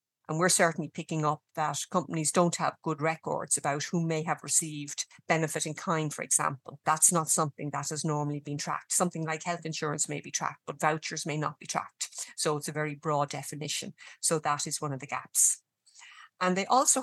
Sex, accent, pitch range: female, Irish, 150-170 Hz